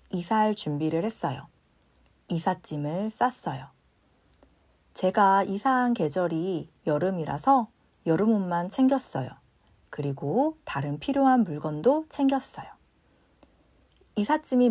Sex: female